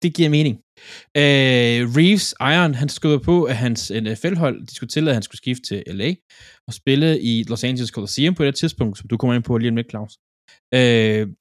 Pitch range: 110-145 Hz